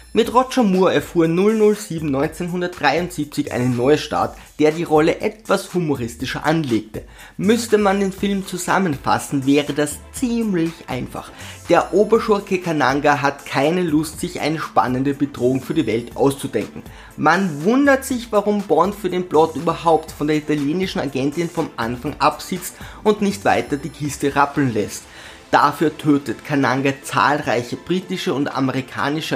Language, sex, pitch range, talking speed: German, male, 130-175 Hz, 135 wpm